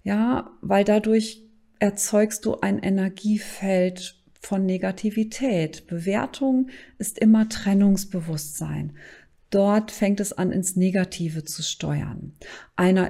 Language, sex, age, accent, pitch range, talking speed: German, female, 40-59, German, 185-225 Hz, 100 wpm